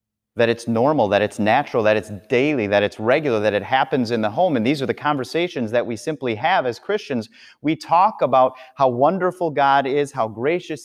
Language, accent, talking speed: English, American, 210 wpm